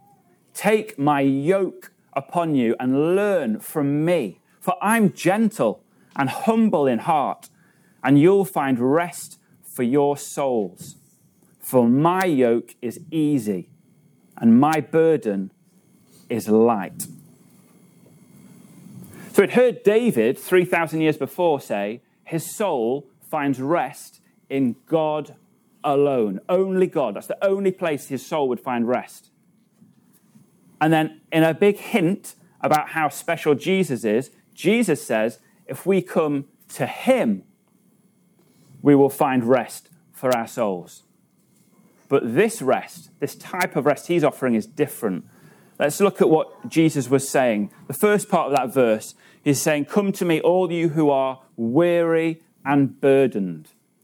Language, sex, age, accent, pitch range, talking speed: English, male, 30-49, British, 140-190 Hz, 135 wpm